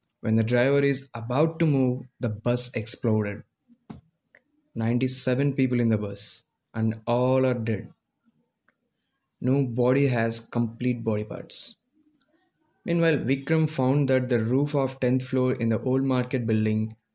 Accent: Indian